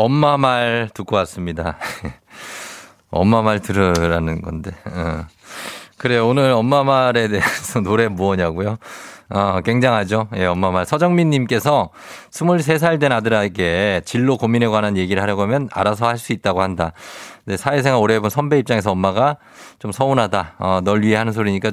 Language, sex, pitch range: Korean, male, 95-135 Hz